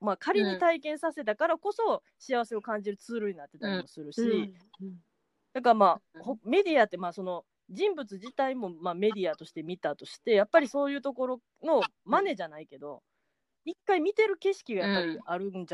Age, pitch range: 20-39, 180-265 Hz